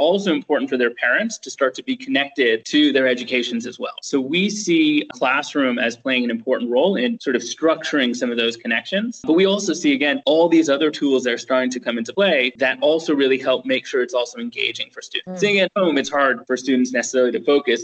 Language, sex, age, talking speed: English, male, 20-39, 230 wpm